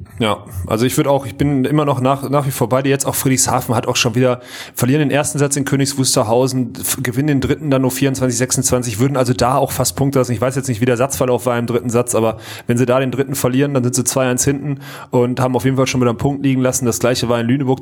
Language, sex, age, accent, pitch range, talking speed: German, male, 30-49, German, 125-150 Hz, 275 wpm